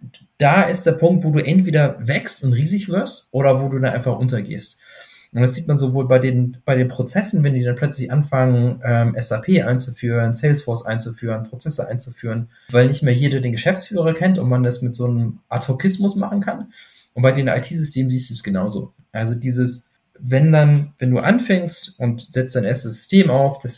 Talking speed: 195 wpm